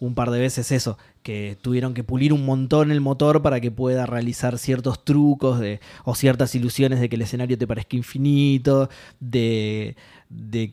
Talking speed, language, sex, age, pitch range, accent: 180 wpm, Spanish, male, 20-39, 120-145 Hz, Argentinian